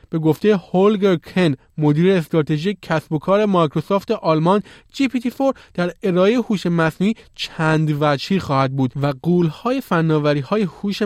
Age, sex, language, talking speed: 20-39, male, Persian, 135 wpm